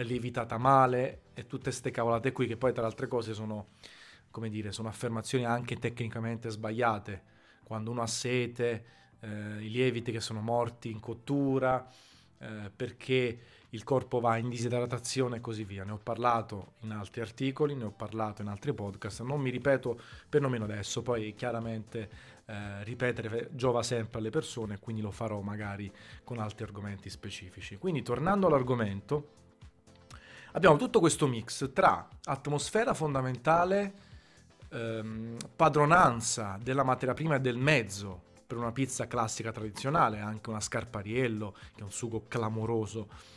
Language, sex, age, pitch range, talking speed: Italian, male, 30-49, 110-130 Hz, 150 wpm